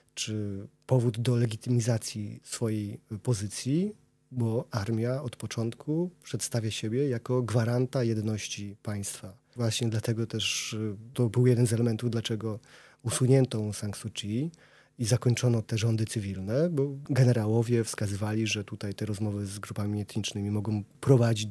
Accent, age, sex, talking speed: native, 30-49, male, 125 wpm